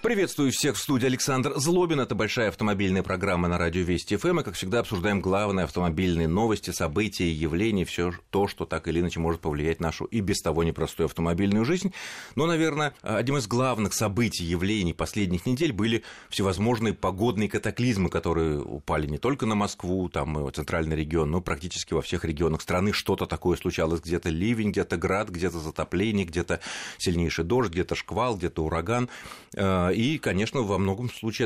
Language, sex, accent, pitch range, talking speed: Russian, male, native, 85-110 Hz, 170 wpm